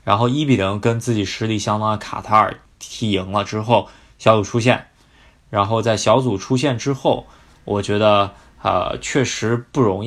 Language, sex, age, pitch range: Chinese, male, 20-39, 105-125 Hz